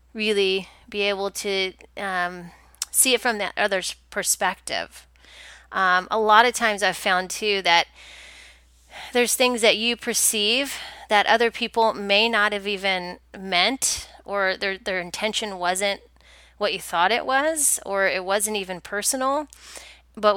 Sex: female